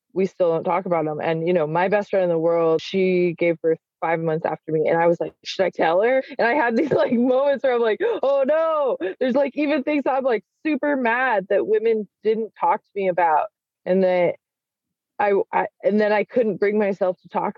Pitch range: 170-235 Hz